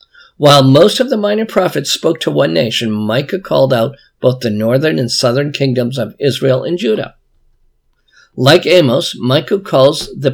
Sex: male